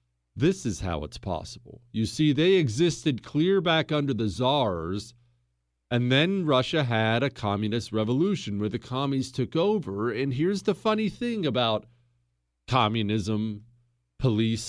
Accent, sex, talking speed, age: American, male, 140 wpm, 40-59